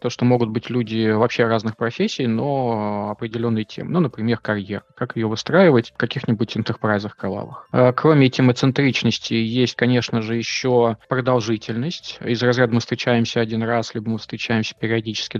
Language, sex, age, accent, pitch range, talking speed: Russian, male, 20-39, native, 115-135 Hz, 150 wpm